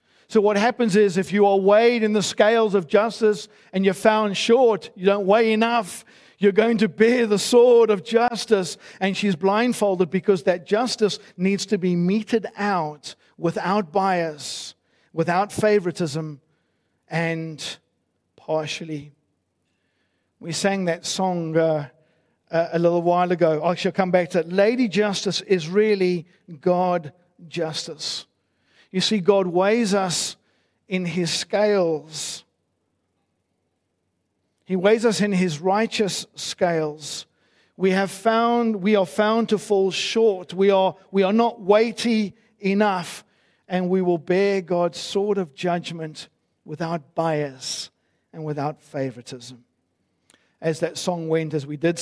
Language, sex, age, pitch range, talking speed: English, male, 50-69, 160-205 Hz, 135 wpm